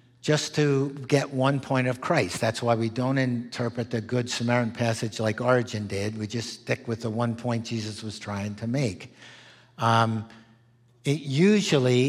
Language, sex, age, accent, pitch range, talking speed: English, male, 60-79, American, 120-140 Hz, 170 wpm